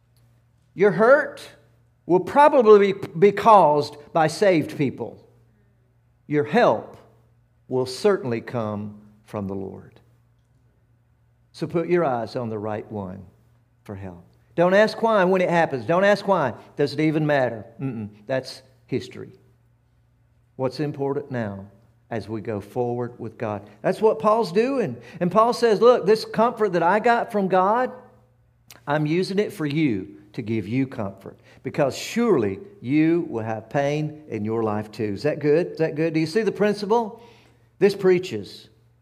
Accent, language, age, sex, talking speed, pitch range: American, English, 50-69, male, 155 wpm, 115-190 Hz